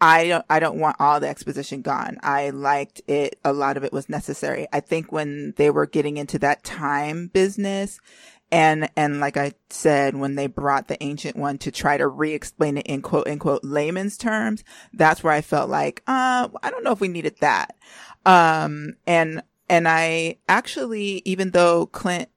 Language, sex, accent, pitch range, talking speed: English, female, American, 145-165 Hz, 190 wpm